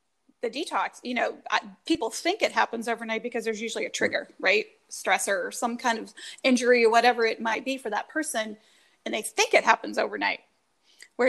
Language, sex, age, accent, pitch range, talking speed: English, female, 30-49, American, 230-285 Hz, 190 wpm